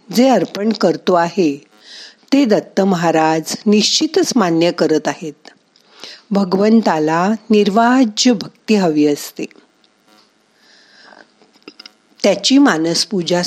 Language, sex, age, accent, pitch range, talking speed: Marathi, female, 50-69, native, 170-230 Hz, 50 wpm